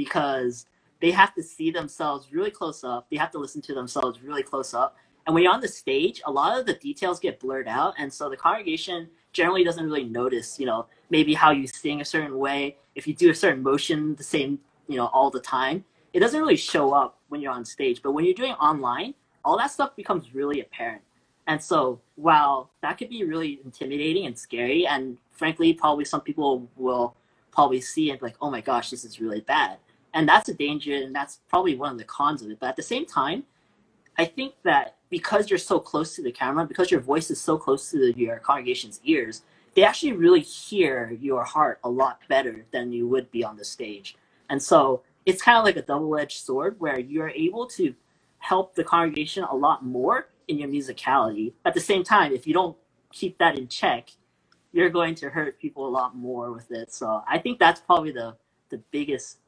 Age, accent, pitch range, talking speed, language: 20-39, American, 130-190 Hz, 215 wpm, English